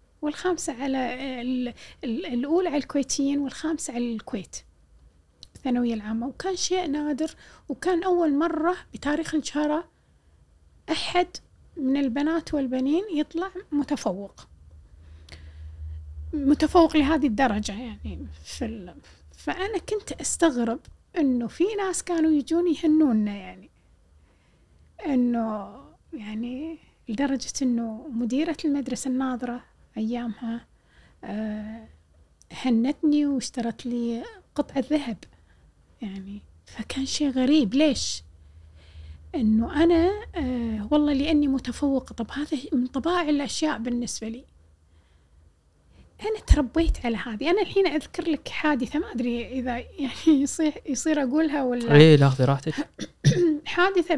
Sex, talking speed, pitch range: female, 105 wpm, 205-305 Hz